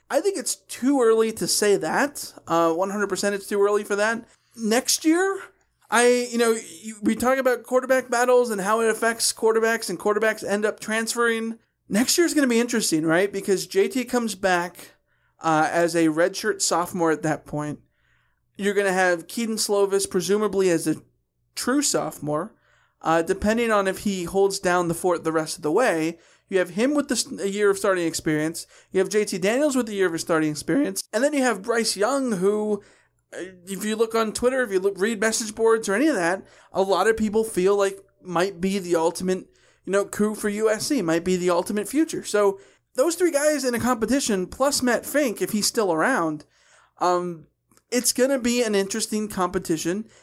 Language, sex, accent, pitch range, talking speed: English, male, American, 180-230 Hz, 195 wpm